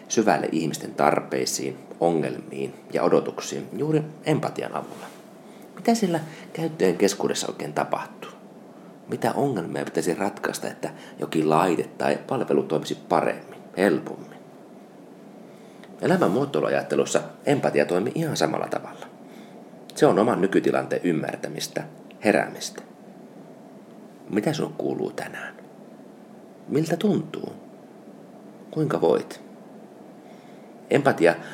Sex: male